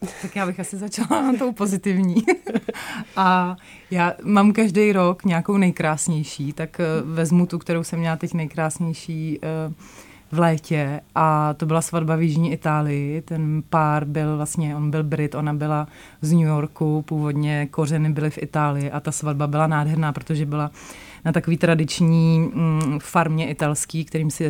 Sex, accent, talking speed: female, native, 155 wpm